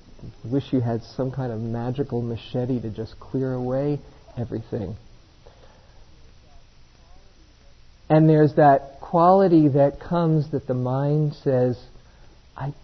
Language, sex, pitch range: English, male, 110-150 Hz